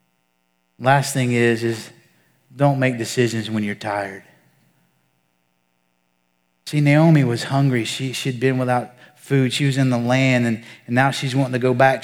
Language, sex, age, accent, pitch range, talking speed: English, male, 30-49, American, 115-155 Hz, 160 wpm